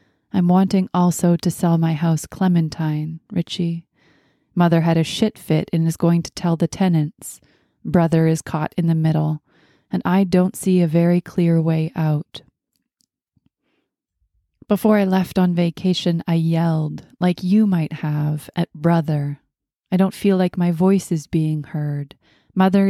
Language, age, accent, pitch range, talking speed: English, 30-49, American, 160-185 Hz, 155 wpm